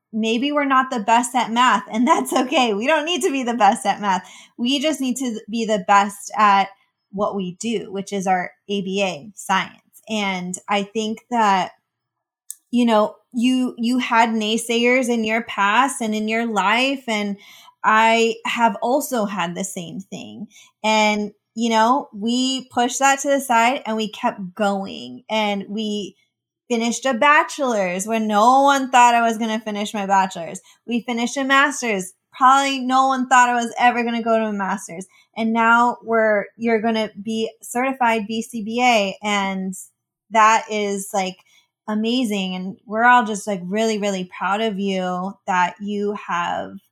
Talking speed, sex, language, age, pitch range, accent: 170 wpm, female, English, 20-39, 200-240 Hz, American